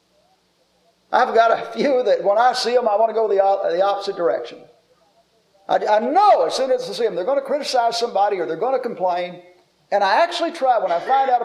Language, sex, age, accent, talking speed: English, male, 50-69, American, 230 wpm